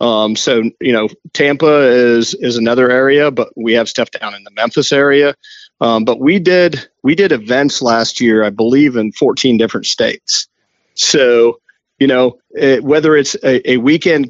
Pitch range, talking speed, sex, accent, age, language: 115-150 Hz, 175 wpm, male, American, 40-59, English